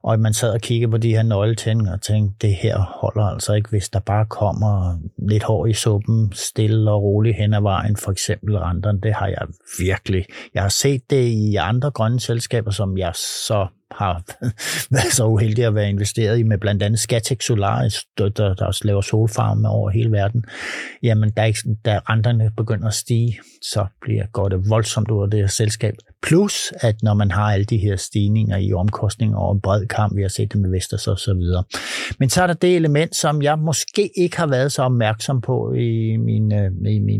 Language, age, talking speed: Danish, 60-79, 200 wpm